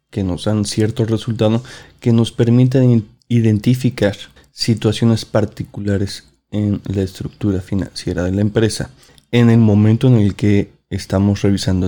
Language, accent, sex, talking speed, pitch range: Spanish, Mexican, male, 130 wpm, 105-125 Hz